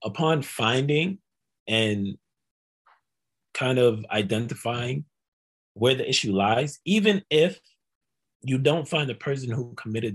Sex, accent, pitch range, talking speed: male, American, 105-135 Hz, 110 wpm